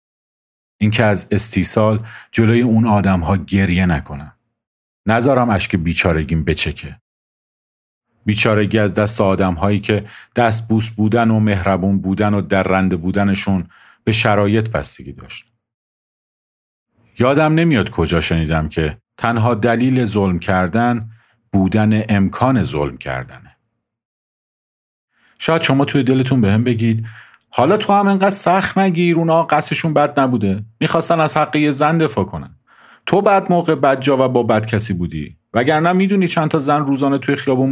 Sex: male